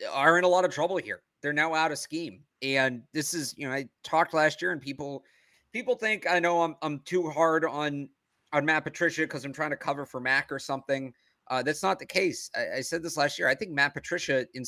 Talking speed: 245 wpm